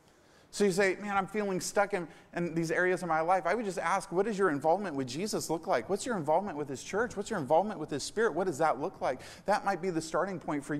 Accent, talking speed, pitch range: American, 280 wpm, 150-200 Hz